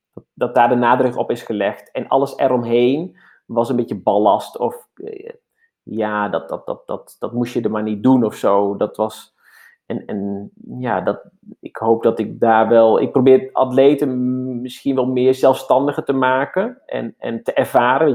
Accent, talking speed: Dutch, 180 wpm